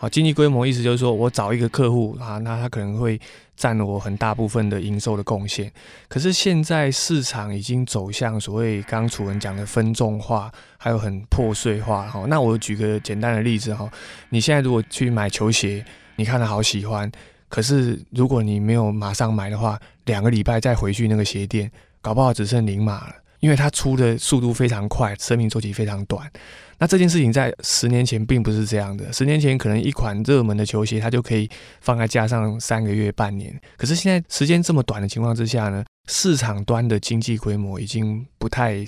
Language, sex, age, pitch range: Chinese, male, 20-39, 105-125 Hz